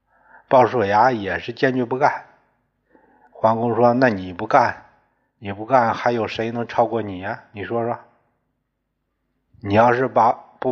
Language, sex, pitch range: Chinese, male, 105-125 Hz